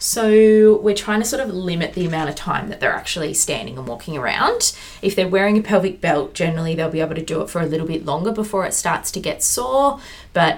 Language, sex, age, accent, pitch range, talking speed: English, female, 20-39, Australian, 155-205 Hz, 245 wpm